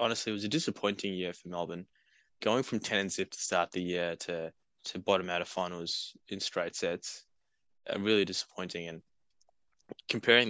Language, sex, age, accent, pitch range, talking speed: English, male, 10-29, Australian, 90-105 Hz, 175 wpm